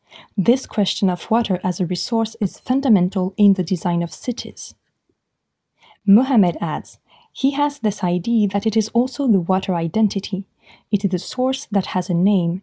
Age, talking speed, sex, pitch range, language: 20-39, 165 wpm, female, 180-225 Hz, French